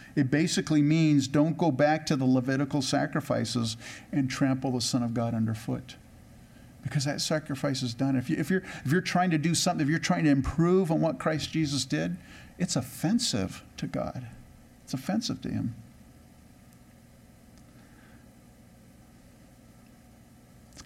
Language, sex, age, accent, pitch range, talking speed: English, male, 50-69, American, 115-145 Hz, 140 wpm